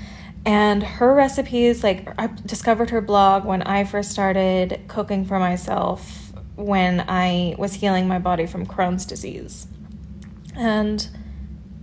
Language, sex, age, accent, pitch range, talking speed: English, female, 20-39, American, 195-225 Hz, 125 wpm